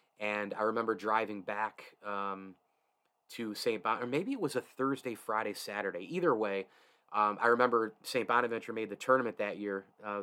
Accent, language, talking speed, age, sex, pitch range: American, English, 175 wpm, 20-39, male, 100-115 Hz